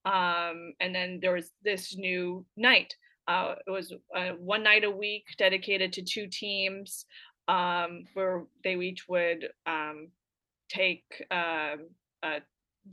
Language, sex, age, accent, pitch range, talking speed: English, female, 20-39, American, 180-215 Hz, 135 wpm